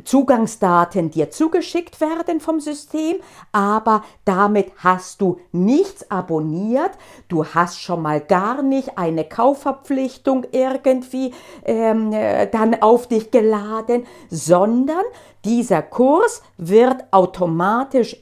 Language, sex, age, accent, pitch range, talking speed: German, female, 50-69, German, 180-270 Hz, 100 wpm